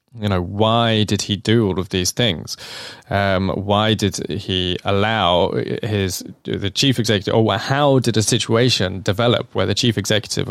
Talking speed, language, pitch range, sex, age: 165 wpm, English, 95-120 Hz, male, 20-39